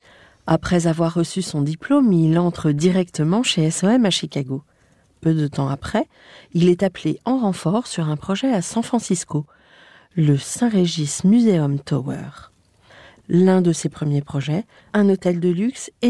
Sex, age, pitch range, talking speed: female, 40-59, 150-200 Hz, 150 wpm